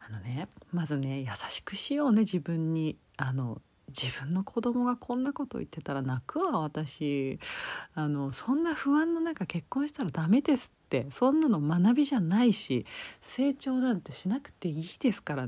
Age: 40-59